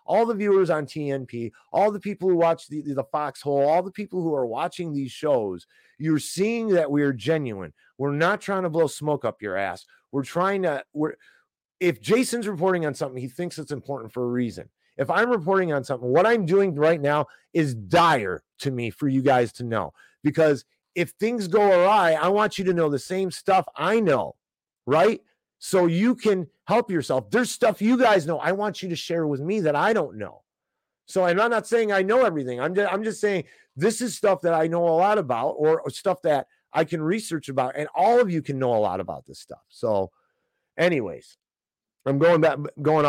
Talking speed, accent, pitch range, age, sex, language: 215 wpm, American, 140-195 Hz, 30-49, male, English